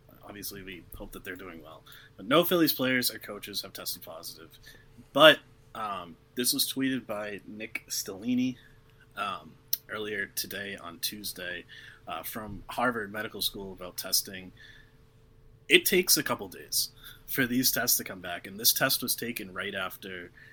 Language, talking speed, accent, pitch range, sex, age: English, 160 wpm, American, 105-135 Hz, male, 30-49